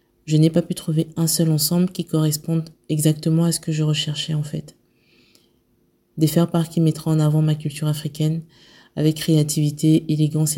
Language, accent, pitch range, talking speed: French, French, 145-160 Hz, 170 wpm